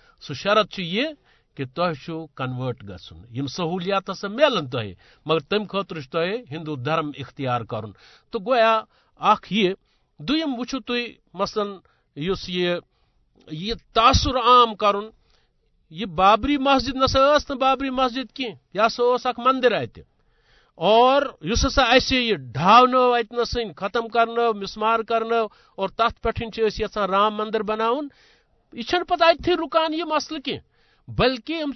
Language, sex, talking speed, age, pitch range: Urdu, male, 110 wpm, 50-69, 175-255 Hz